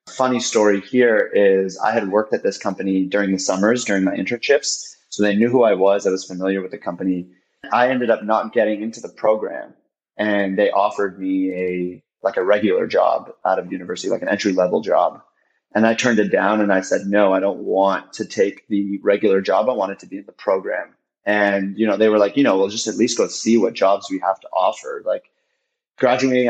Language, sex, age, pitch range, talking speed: English, male, 30-49, 95-120 Hz, 220 wpm